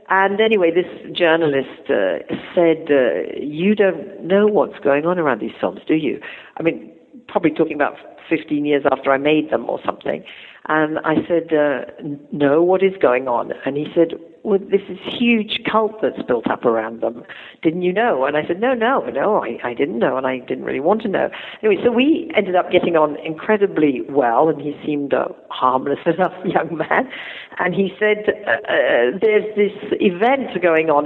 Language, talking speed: English, 190 wpm